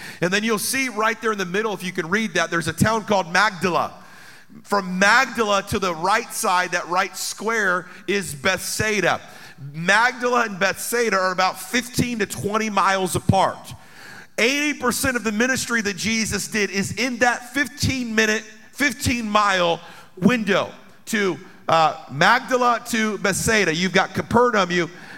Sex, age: male, 40-59